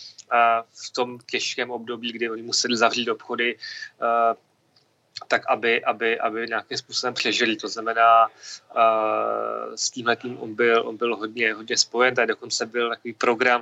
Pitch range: 115-125 Hz